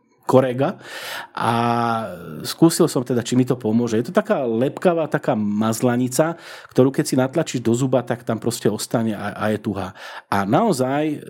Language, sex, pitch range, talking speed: Slovak, male, 115-140 Hz, 160 wpm